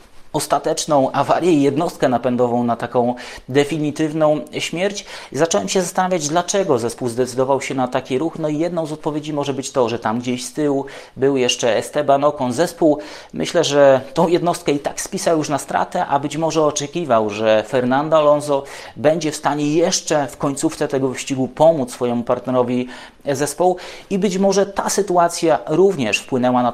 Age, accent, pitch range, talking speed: 30-49, Polish, 125-155 Hz, 165 wpm